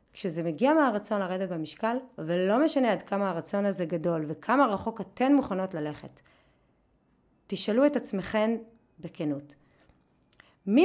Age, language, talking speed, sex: 30-49, Hebrew, 120 wpm, female